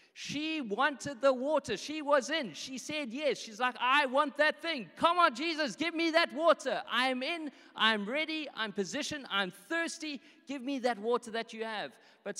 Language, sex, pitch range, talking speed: English, male, 175-255 Hz, 190 wpm